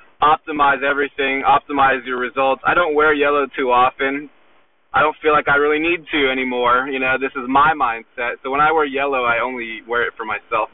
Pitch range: 135-155 Hz